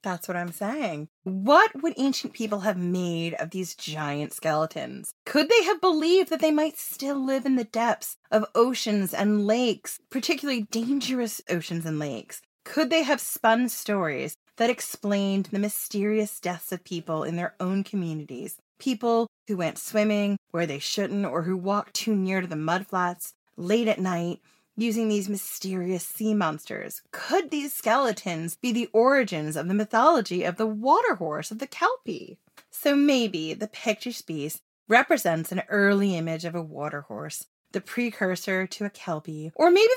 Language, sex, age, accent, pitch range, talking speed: English, female, 30-49, American, 175-250 Hz, 165 wpm